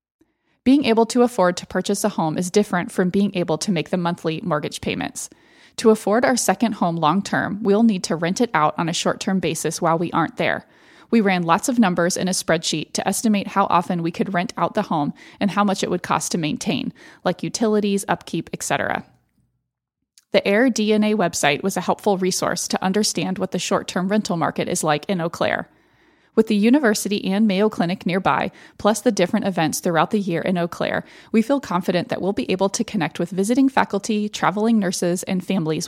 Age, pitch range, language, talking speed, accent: 30-49, 175-215 Hz, English, 200 wpm, American